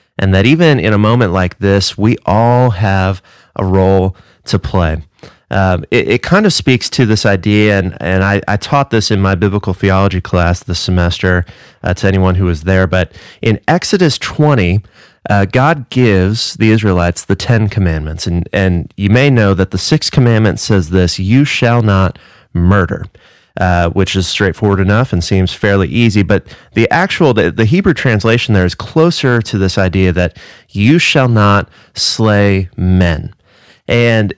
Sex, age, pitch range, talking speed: male, 30-49, 95-115 Hz, 175 wpm